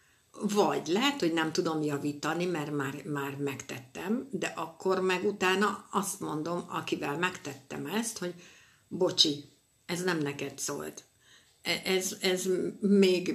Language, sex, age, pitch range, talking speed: Hungarian, female, 60-79, 145-190 Hz, 125 wpm